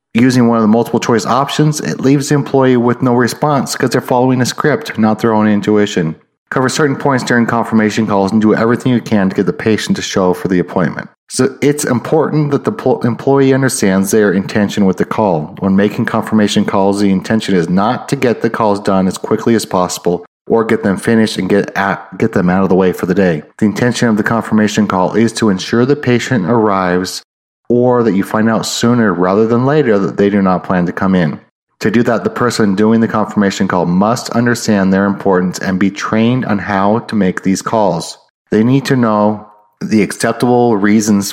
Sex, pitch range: male, 100-120 Hz